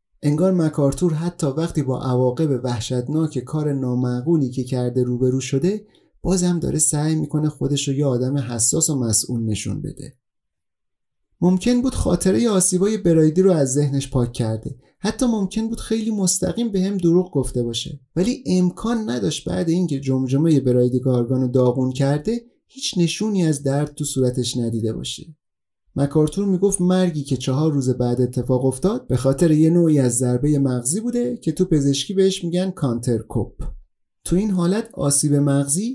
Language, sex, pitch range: Persian, male, 125-175 Hz